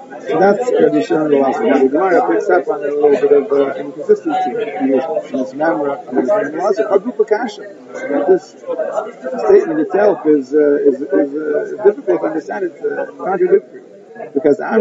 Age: 50-69